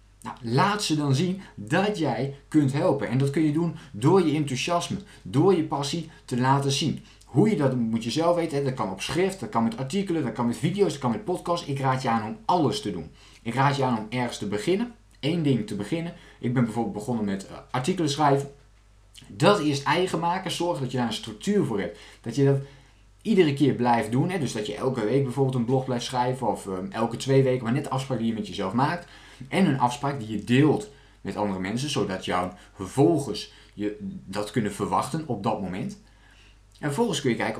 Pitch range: 110-145 Hz